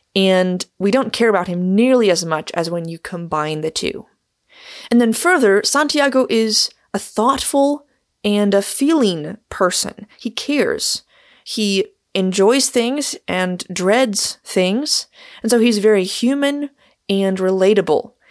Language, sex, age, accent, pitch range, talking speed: English, female, 20-39, American, 185-250 Hz, 135 wpm